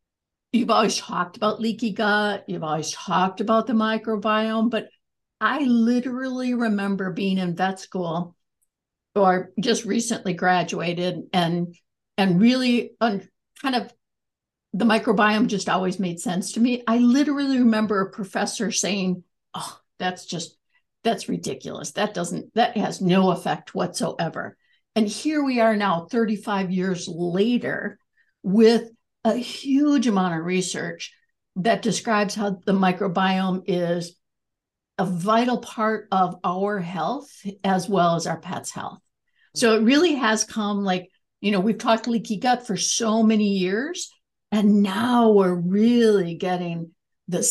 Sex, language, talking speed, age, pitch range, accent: female, English, 140 wpm, 60-79, 185-225 Hz, American